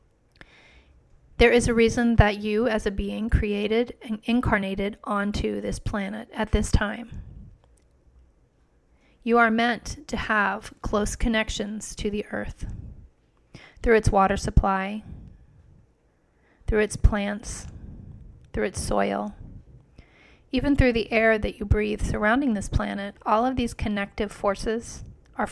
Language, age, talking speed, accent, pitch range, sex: English, 30-49, 125 wpm, American, 195-230 Hz, female